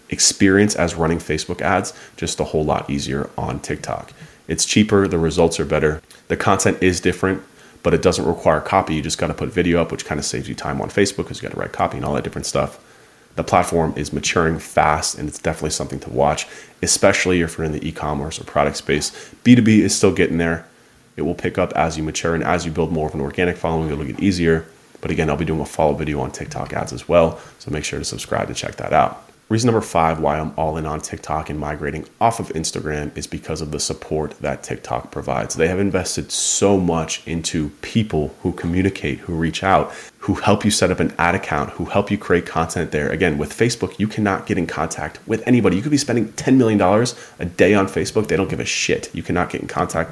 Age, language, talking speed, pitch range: 30-49, English, 235 wpm, 80-95 Hz